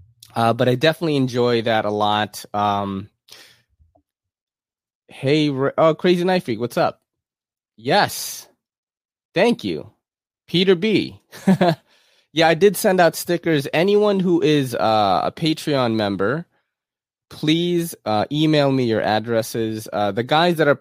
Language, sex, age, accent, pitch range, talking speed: English, male, 20-39, American, 105-160 Hz, 130 wpm